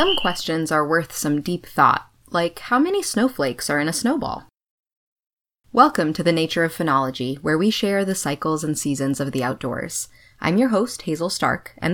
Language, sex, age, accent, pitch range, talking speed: English, female, 20-39, American, 135-195 Hz, 185 wpm